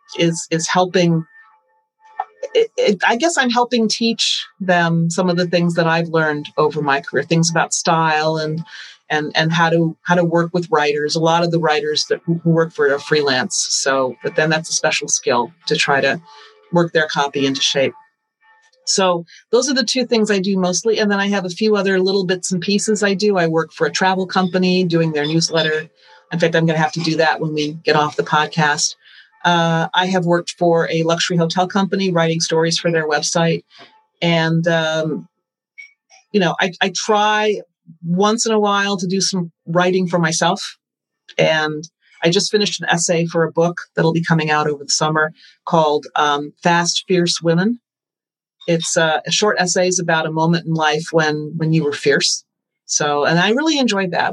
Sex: female